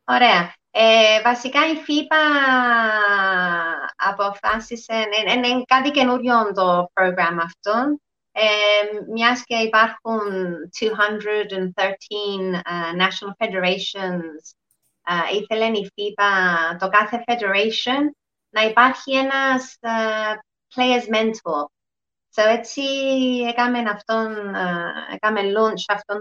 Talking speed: 100 wpm